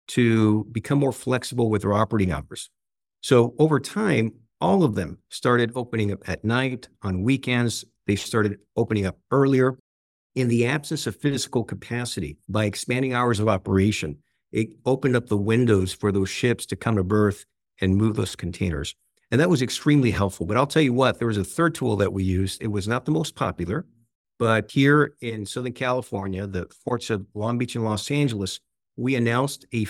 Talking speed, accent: 185 wpm, American